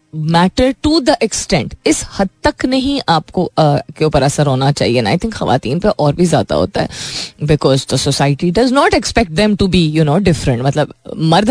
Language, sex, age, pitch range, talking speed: Hindi, female, 20-39, 145-210 Hz, 205 wpm